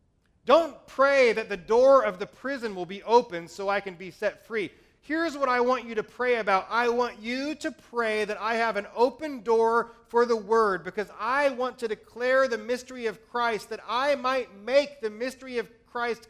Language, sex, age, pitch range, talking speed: English, male, 30-49, 185-250 Hz, 205 wpm